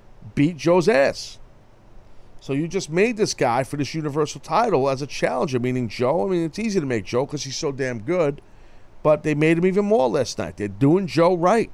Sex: male